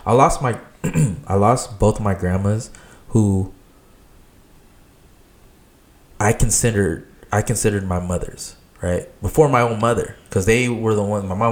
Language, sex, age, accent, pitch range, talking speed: English, male, 20-39, American, 95-110 Hz, 145 wpm